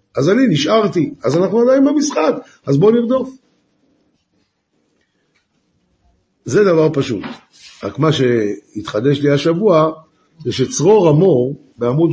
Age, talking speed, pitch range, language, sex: 50-69, 110 wpm, 145-185 Hz, Hebrew, male